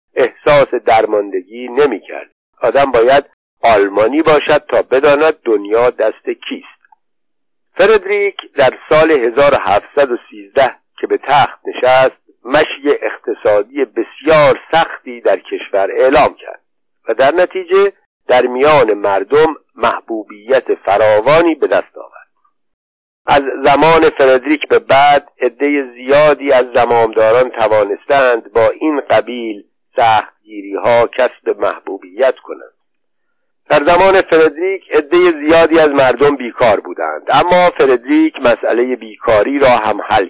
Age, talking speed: 50-69, 105 wpm